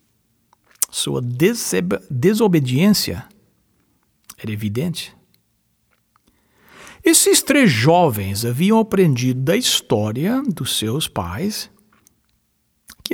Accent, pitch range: Brazilian, 135-220 Hz